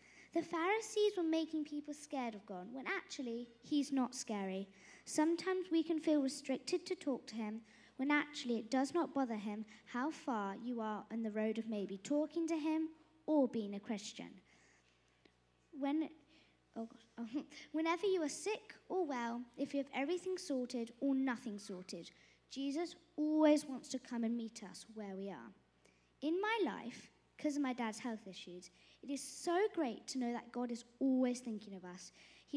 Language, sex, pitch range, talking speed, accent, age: English, female, 220-305 Hz, 175 wpm, British, 20-39